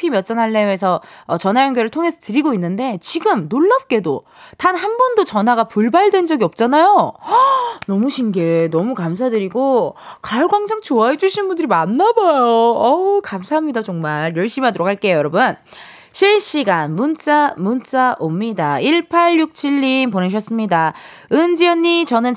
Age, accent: 20-39, native